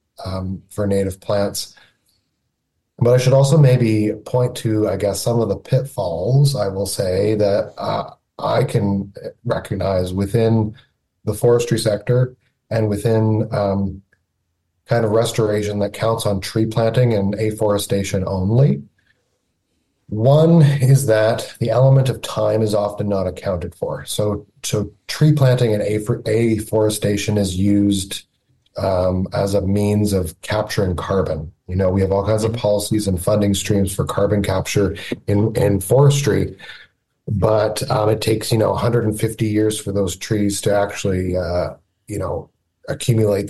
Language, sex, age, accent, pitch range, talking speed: English, male, 30-49, American, 100-115 Hz, 145 wpm